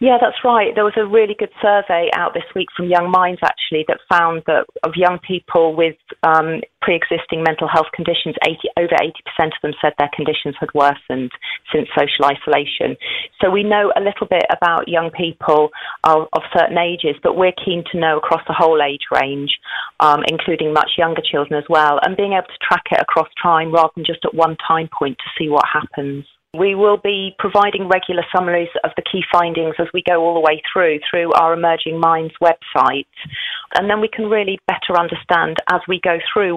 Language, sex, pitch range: English, female, 160-180 Hz